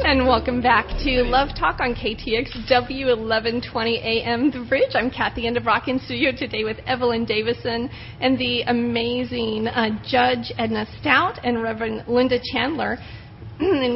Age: 40-59